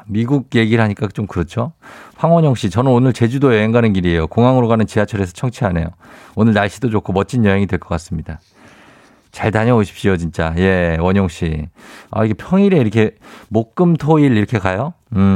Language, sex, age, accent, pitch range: Korean, male, 50-69, native, 95-135 Hz